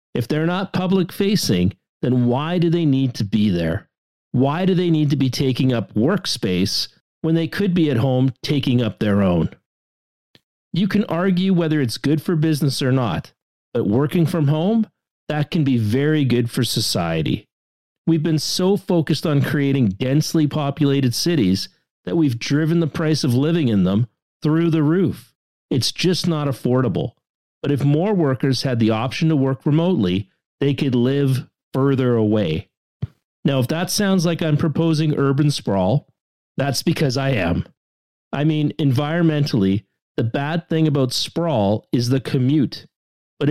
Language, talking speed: English, 160 wpm